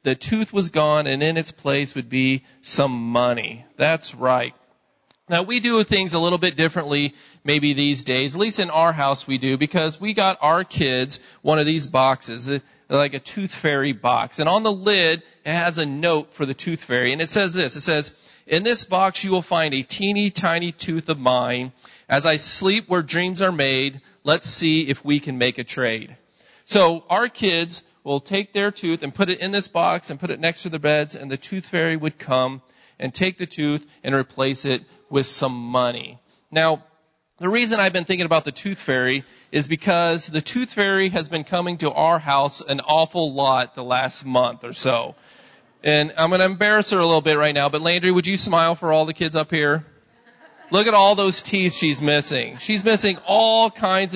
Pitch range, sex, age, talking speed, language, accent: 140-185 Hz, male, 40-59, 210 wpm, English, American